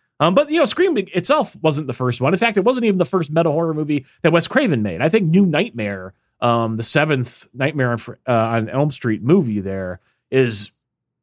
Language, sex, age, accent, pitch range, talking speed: English, male, 30-49, American, 115-170 Hz, 205 wpm